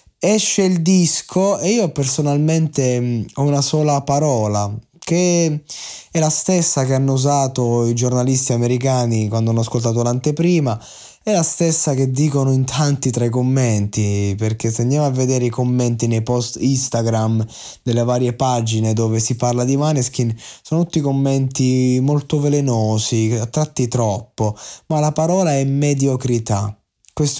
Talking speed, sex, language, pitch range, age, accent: 140 wpm, male, Italian, 115-140 Hz, 20-39, native